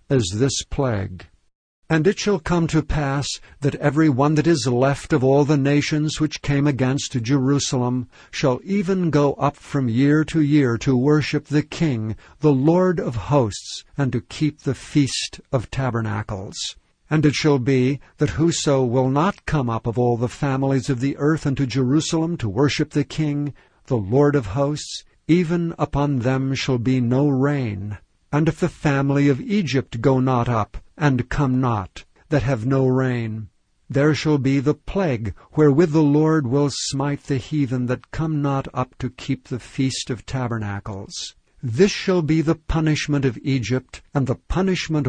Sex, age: male, 60-79